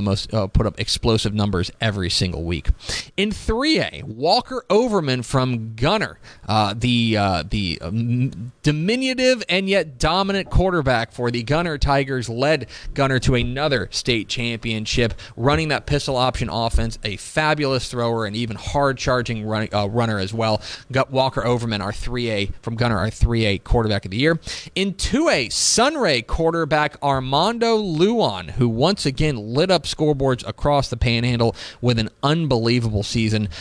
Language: English